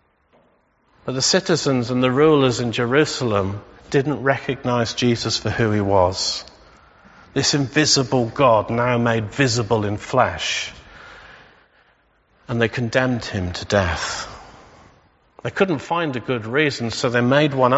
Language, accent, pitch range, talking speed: English, British, 105-140 Hz, 130 wpm